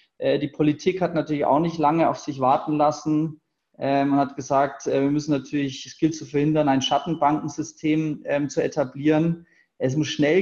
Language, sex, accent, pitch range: English, male, German, 135-160 Hz